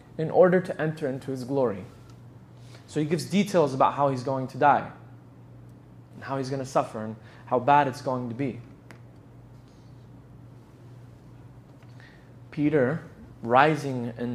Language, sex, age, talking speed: English, male, 20-39, 140 wpm